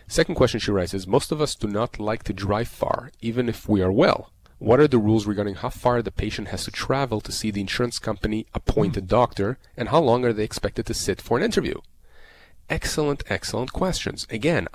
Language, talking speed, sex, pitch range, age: English, 215 wpm, male, 100-125 Hz, 30-49